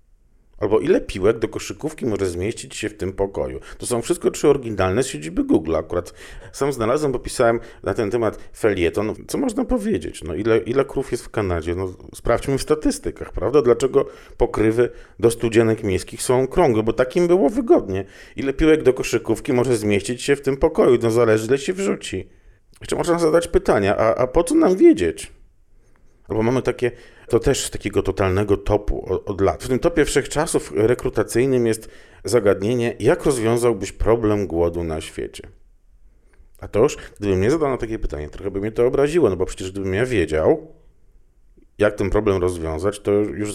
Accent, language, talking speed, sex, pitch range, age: native, Polish, 175 wpm, male, 95-140 Hz, 40-59